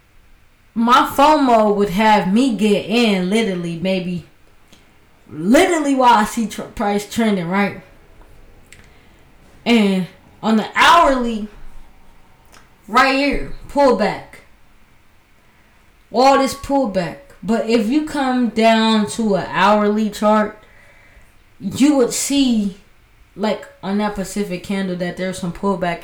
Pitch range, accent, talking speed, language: 180-225 Hz, American, 110 wpm, English